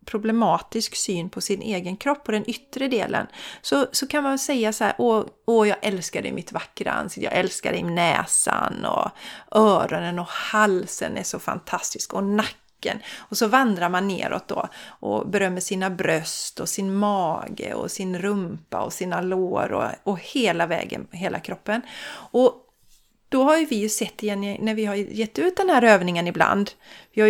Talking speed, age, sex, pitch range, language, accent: 180 wpm, 30-49, female, 195-235 Hz, Swedish, native